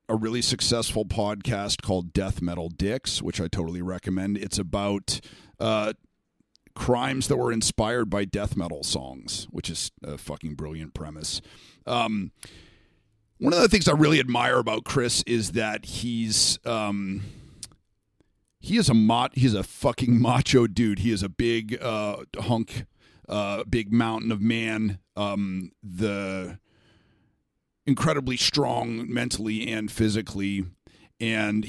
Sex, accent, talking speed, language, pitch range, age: male, American, 135 wpm, English, 100-120 Hz, 50-69